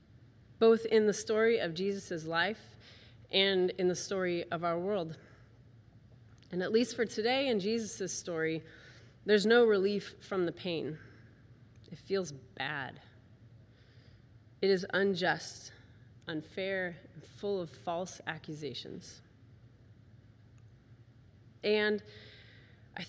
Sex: female